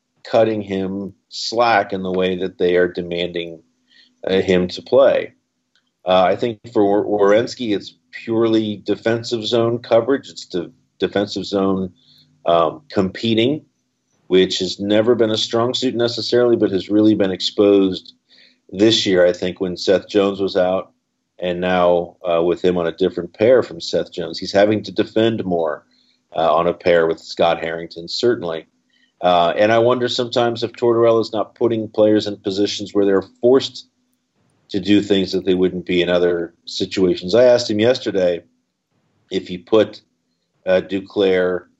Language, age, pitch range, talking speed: English, 50-69, 90-115 Hz, 160 wpm